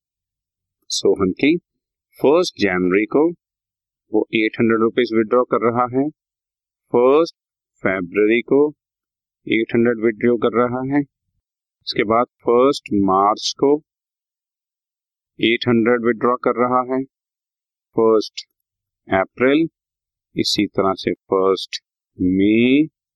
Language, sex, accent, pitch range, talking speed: Hindi, male, native, 100-150 Hz, 95 wpm